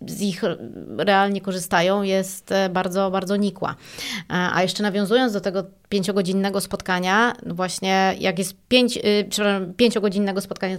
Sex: female